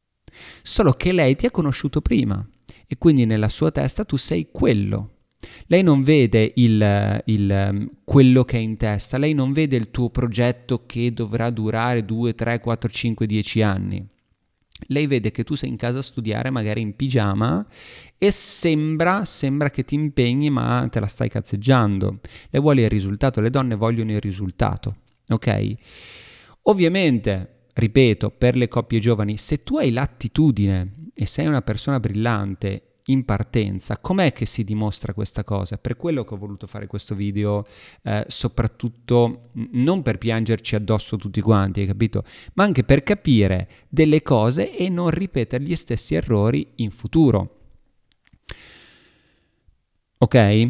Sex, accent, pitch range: male, native, 105-130 Hz